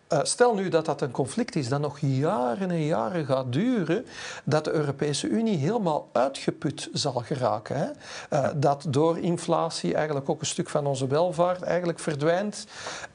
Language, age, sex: Dutch, 50-69, male